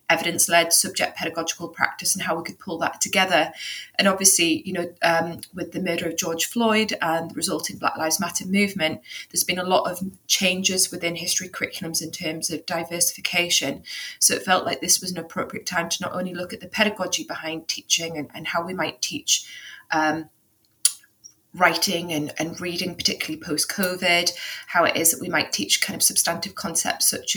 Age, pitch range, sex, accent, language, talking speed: 20-39, 165-185 Hz, female, British, English, 190 wpm